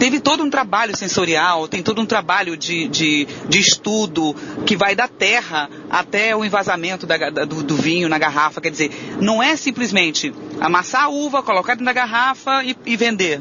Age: 40-59